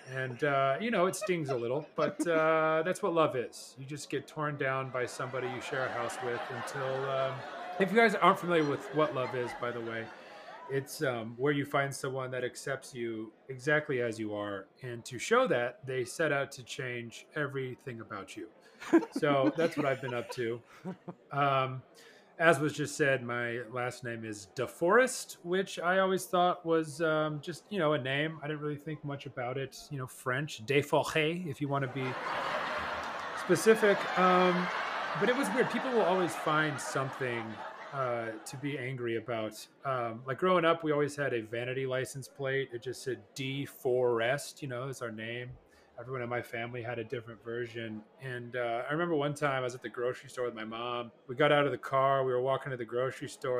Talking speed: 205 wpm